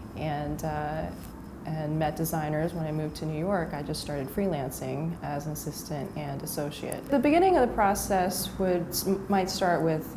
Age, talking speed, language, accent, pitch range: 20-39, 170 wpm, English, American, 150-170 Hz